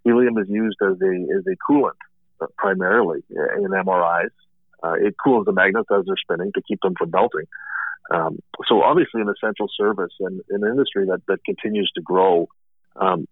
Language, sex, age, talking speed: English, male, 40-59, 180 wpm